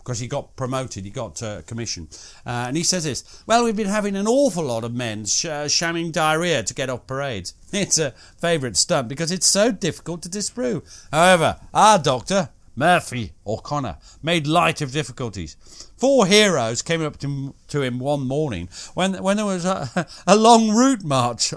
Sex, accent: male, British